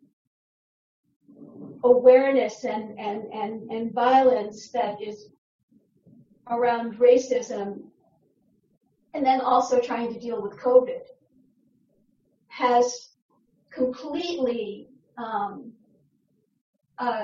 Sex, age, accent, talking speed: female, 50-69, American, 75 wpm